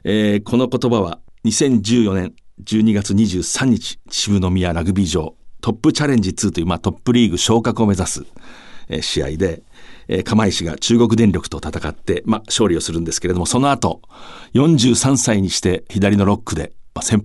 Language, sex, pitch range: Japanese, male, 85-115 Hz